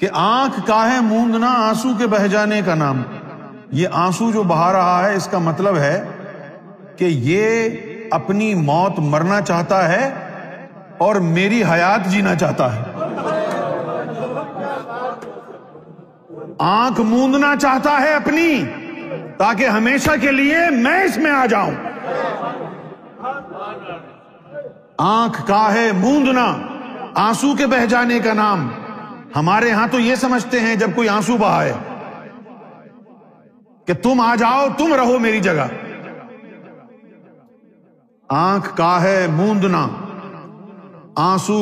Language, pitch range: Urdu, 190-250 Hz